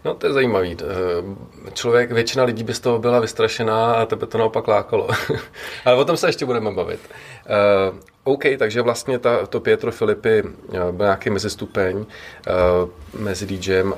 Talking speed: 170 wpm